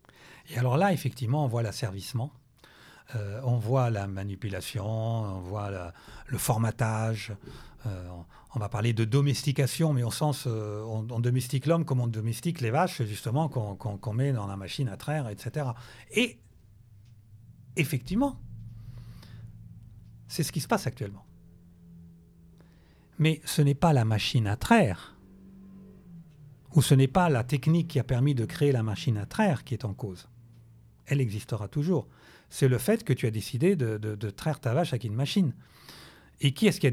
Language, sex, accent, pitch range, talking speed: French, male, French, 110-145 Hz, 165 wpm